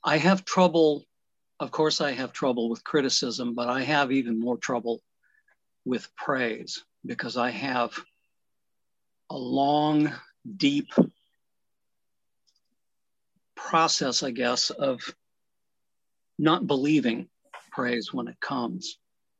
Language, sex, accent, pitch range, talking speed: English, male, American, 135-175 Hz, 105 wpm